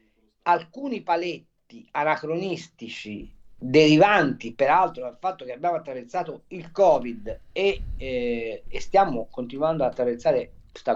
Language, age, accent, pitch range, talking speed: Italian, 50-69, native, 125-200 Hz, 110 wpm